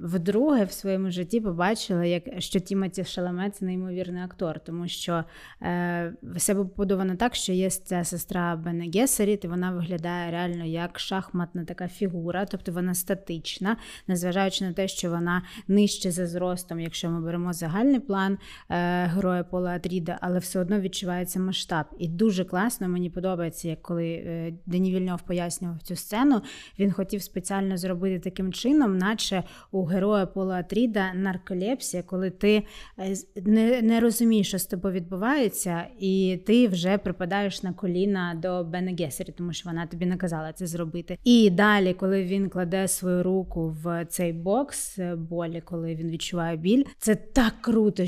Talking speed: 150 wpm